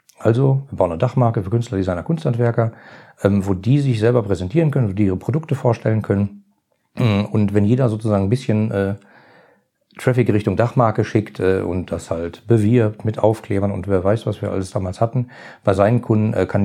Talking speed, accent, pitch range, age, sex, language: 190 wpm, German, 100-125 Hz, 40-59, male, German